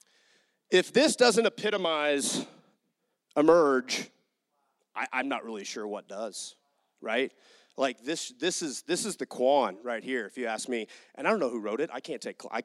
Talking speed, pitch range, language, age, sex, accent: 180 wpm, 140-185 Hz, English, 30-49, male, American